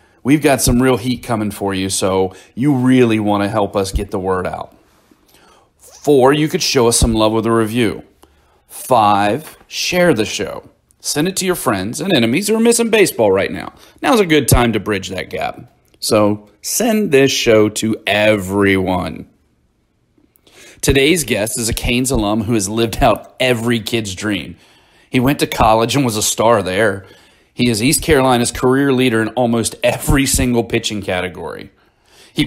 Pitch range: 100-130 Hz